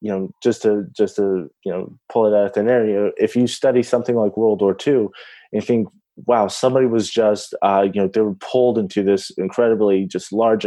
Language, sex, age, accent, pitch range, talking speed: English, male, 20-39, American, 95-115 Hz, 230 wpm